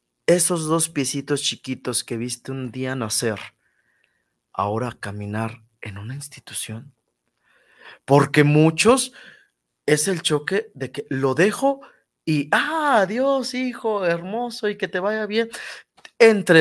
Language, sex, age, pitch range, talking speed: Spanish, male, 30-49, 110-160 Hz, 125 wpm